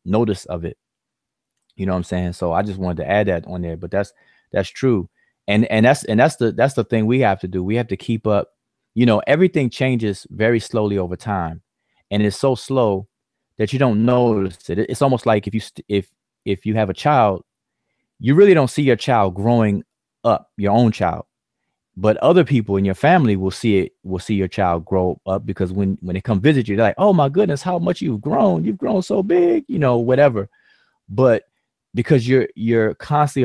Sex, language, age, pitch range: male, English, 30-49, 100-125 Hz